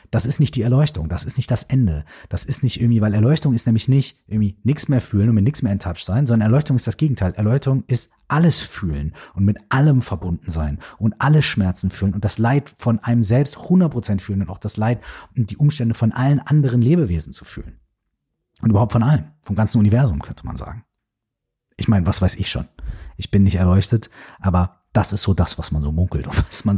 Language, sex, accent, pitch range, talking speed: German, male, German, 100-135 Hz, 225 wpm